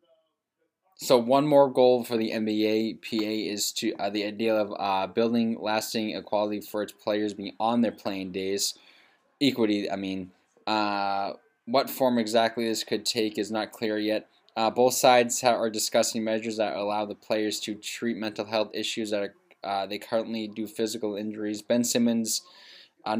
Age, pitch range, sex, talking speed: 10-29, 105-120 Hz, male, 170 wpm